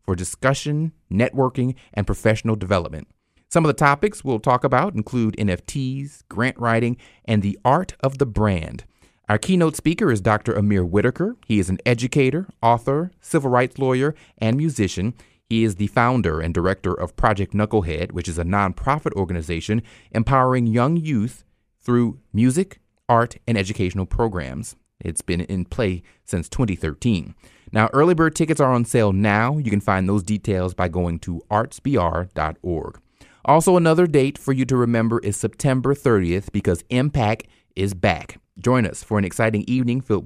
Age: 30-49